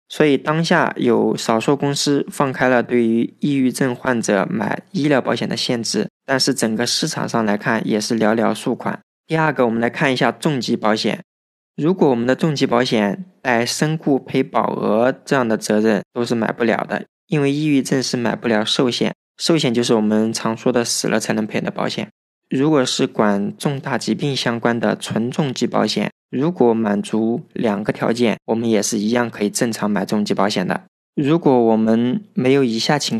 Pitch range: 115-140 Hz